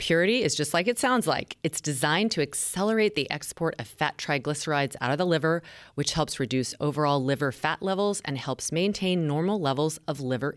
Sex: female